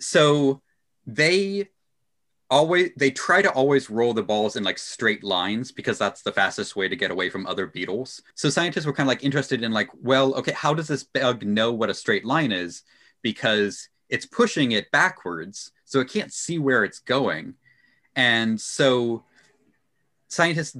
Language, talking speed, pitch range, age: English, 175 wpm, 110-145 Hz, 30-49